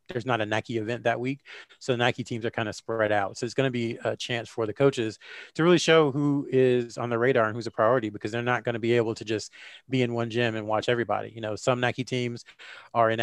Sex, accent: male, American